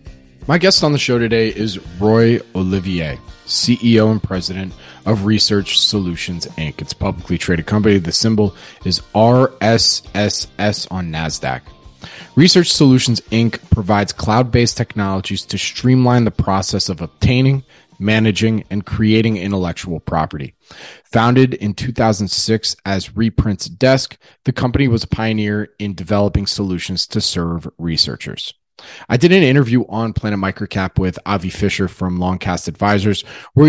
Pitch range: 95-120 Hz